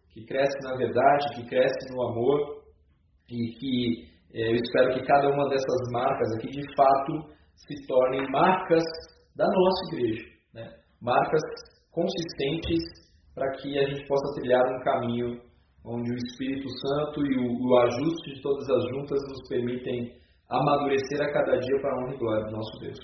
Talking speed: 165 wpm